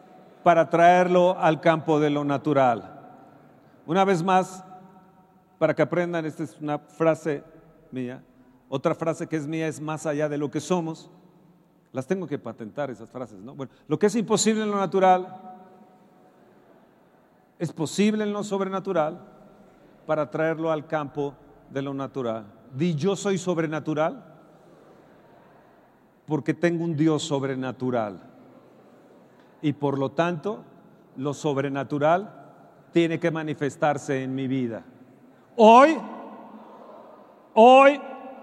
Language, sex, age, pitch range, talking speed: Spanish, male, 40-59, 150-200 Hz, 120 wpm